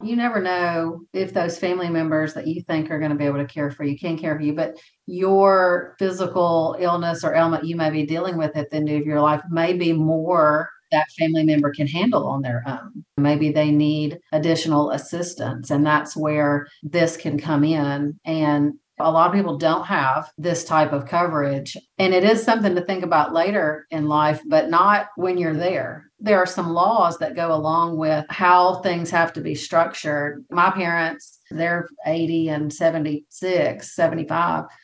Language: English